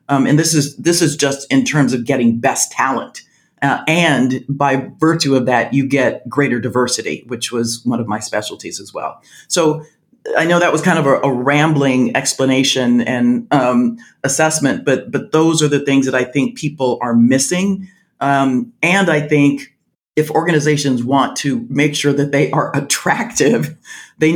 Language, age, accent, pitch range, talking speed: English, 40-59, American, 130-165 Hz, 175 wpm